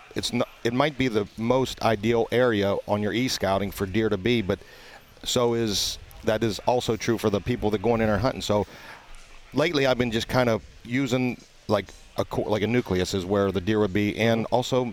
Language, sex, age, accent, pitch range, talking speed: English, male, 40-59, American, 100-120 Hz, 215 wpm